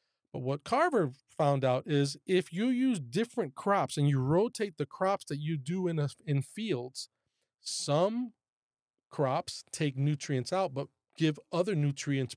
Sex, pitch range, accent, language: male, 135-175 Hz, American, English